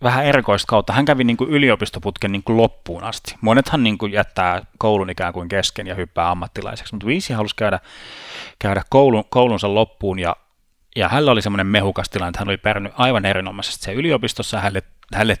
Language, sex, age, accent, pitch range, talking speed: Finnish, male, 30-49, native, 95-115 Hz, 170 wpm